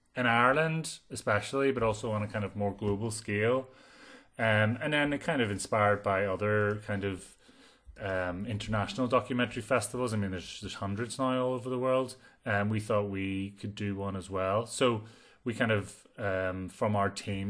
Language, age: English, 30-49